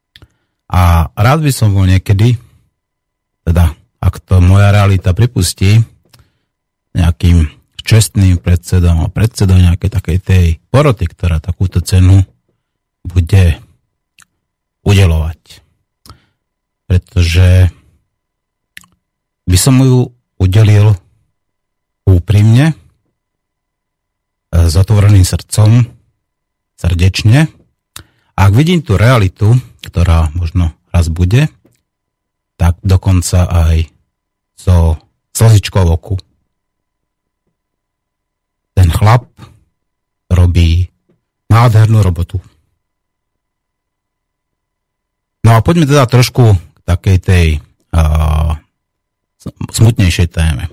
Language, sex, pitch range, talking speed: Slovak, male, 85-105 Hz, 80 wpm